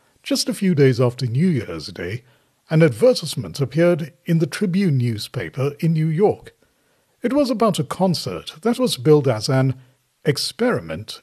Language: English